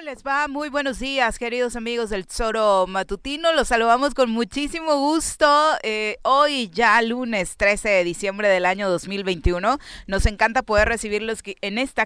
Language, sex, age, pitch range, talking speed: Spanish, female, 30-49, 180-240 Hz, 155 wpm